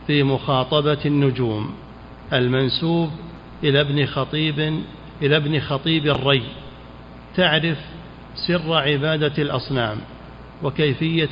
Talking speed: 85 wpm